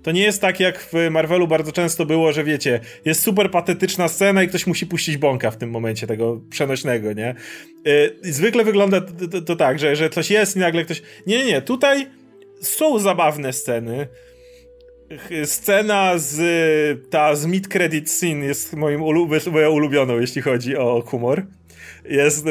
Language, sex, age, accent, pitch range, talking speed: Polish, male, 30-49, native, 150-200 Hz, 165 wpm